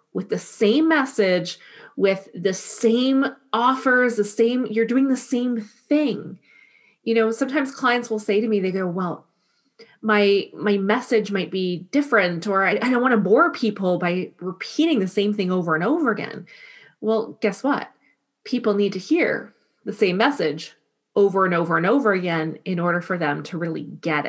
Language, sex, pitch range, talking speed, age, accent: English, female, 195-250 Hz, 175 wpm, 30-49, American